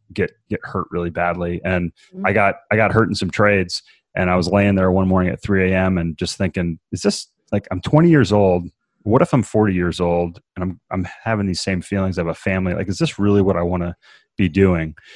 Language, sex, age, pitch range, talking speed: English, male, 30-49, 90-100 Hz, 240 wpm